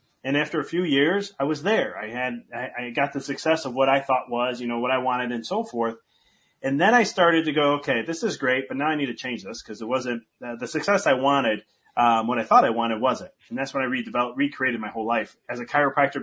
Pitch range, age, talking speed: 125-160 Hz, 30-49, 265 wpm